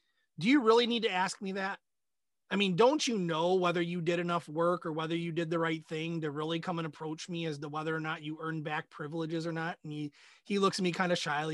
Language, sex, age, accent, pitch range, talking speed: English, male, 30-49, American, 160-195 Hz, 265 wpm